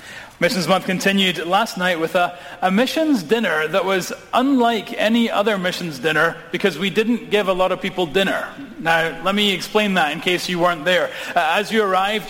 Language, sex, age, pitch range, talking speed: English, male, 30-49, 170-205 Hz, 195 wpm